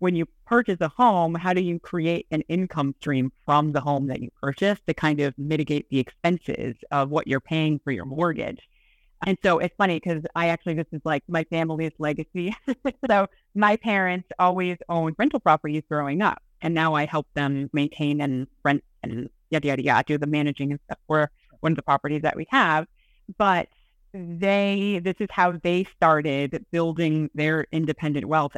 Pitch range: 150-175 Hz